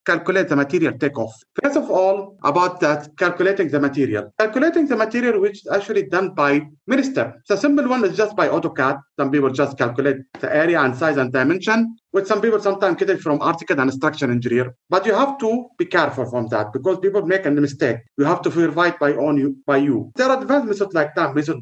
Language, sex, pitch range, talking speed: English, male, 140-195 Hz, 215 wpm